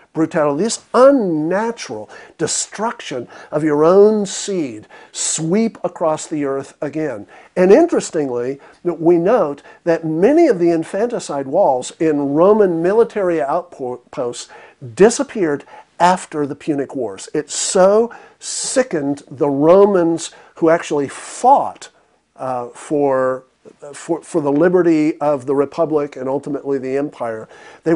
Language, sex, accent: English, male, American